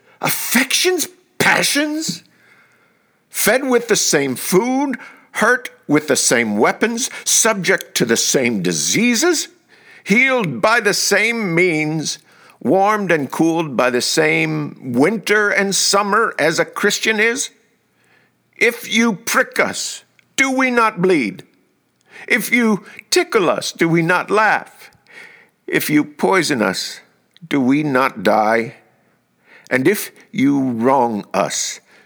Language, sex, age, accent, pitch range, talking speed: English, male, 50-69, American, 145-240 Hz, 120 wpm